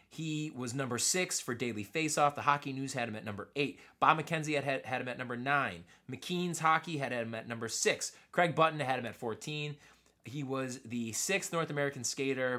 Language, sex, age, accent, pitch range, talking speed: English, male, 20-39, American, 115-150 Hz, 215 wpm